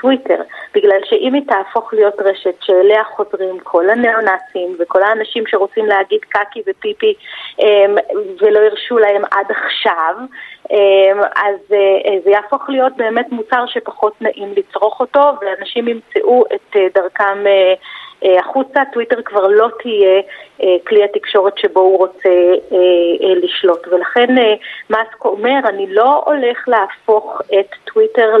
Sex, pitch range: female, 195-270 Hz